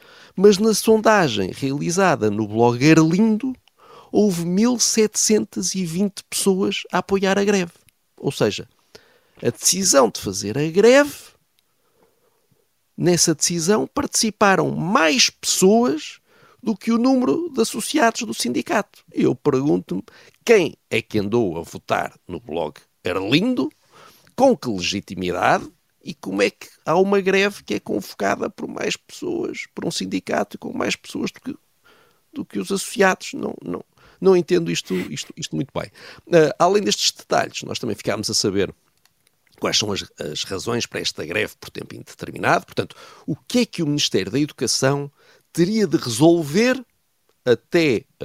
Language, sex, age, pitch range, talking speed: Portuguese, male, 50-69, 160-245 Hz, 140 wpm